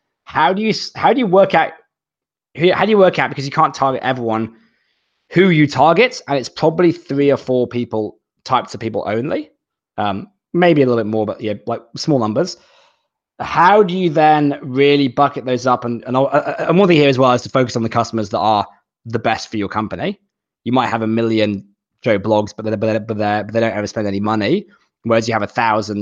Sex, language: male, English